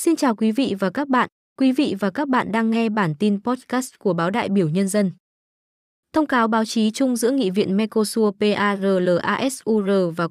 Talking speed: 200 wpm